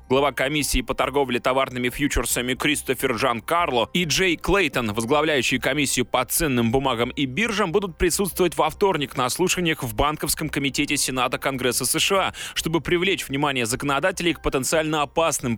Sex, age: male, 20-39